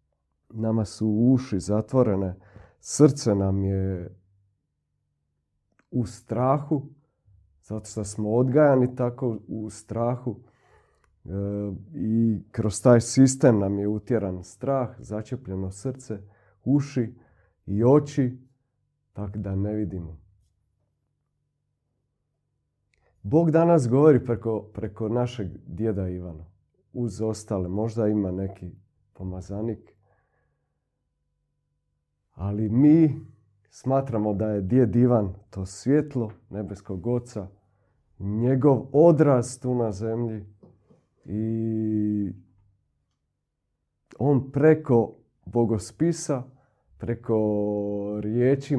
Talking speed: 85 wpm